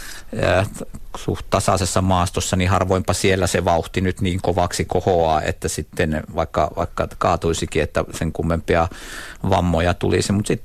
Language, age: Finnish, 50-69